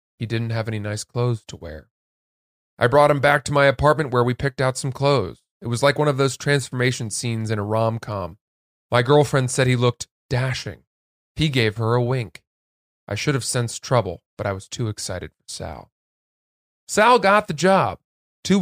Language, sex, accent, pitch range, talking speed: English, male, American, 110-140 Hz, 195 wpm